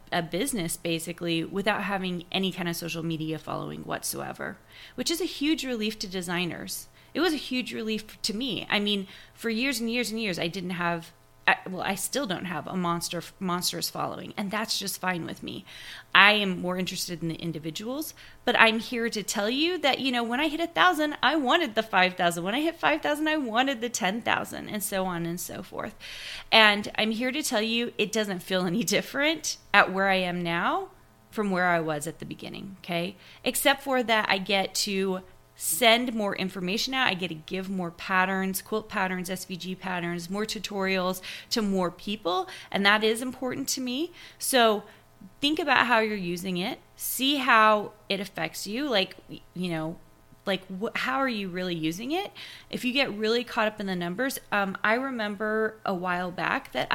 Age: 30-49